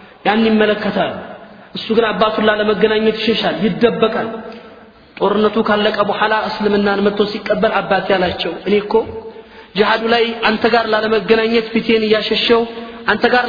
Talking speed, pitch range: 140 wpm, 185-220 Hz